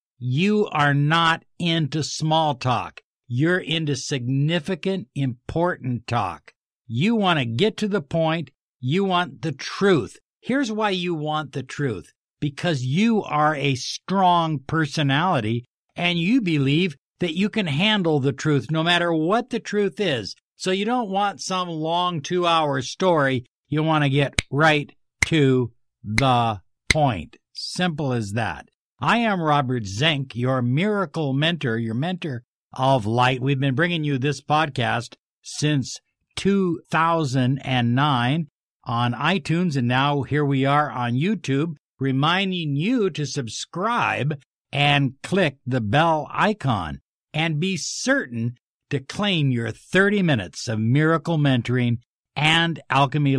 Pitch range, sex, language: 130-170 Hz, male, English